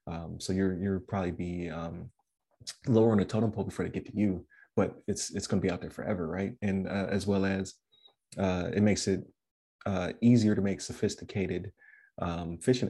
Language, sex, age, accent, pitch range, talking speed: English, male, 20-39, American, 90-105 Hz, 195 wpm